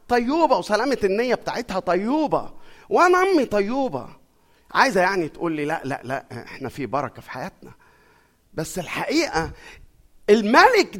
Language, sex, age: Arabic, male, 50-69